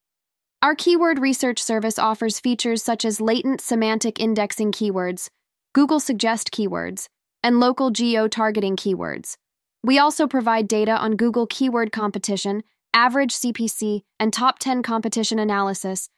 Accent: American